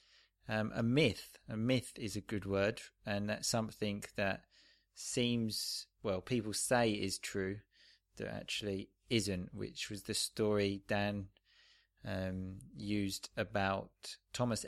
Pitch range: 100-115 Hz